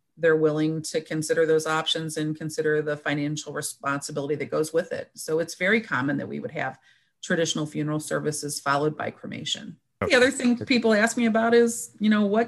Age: 40-59